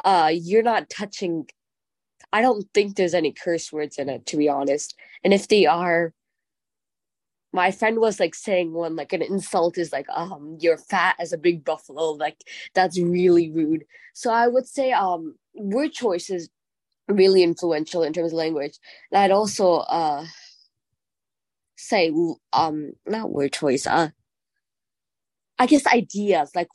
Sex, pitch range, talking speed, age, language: female, 160-205 Hz, 160 wpm, 20-39, English